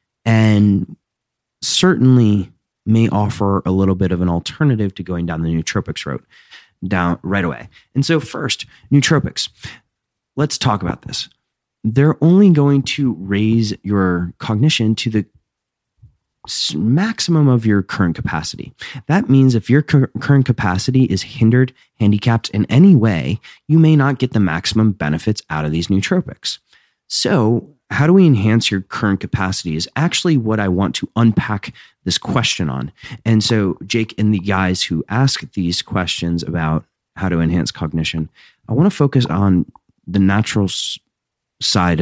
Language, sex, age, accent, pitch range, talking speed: English, male, 30-49, American, 95-130 Hz, 150 wpm